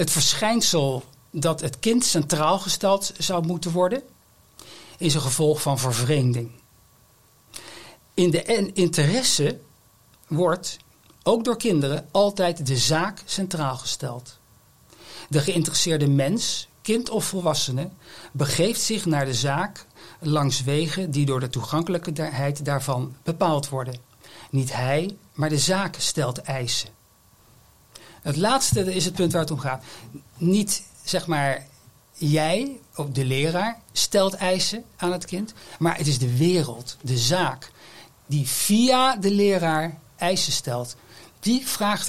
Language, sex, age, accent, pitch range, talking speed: Dutch, male, 60-79, Dutch, 135-180 Hz, 125 wpm